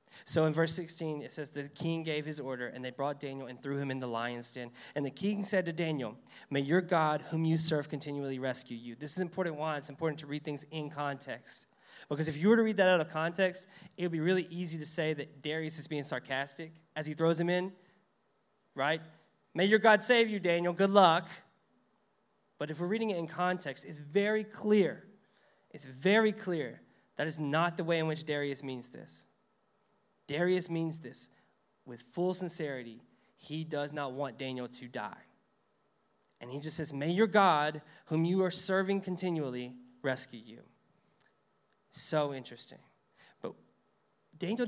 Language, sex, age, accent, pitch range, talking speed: English, male, 20-39, American, 145-185 Hz, 185 wpm